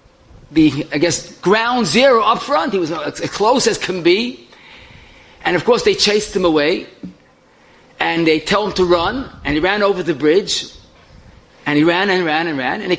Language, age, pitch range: English, 30-49, 185-260 Hz